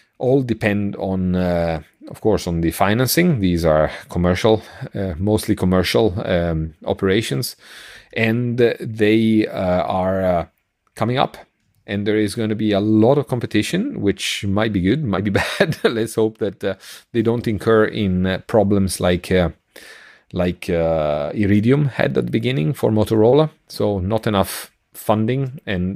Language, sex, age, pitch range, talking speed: English, male, 30-49, 95-110 Hz, 155 wpm